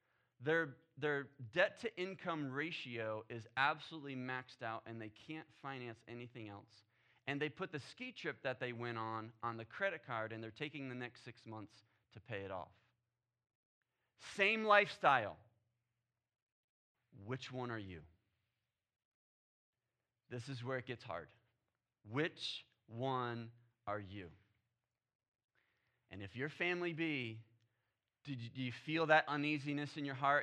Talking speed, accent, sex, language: 140 wpm, American, male, English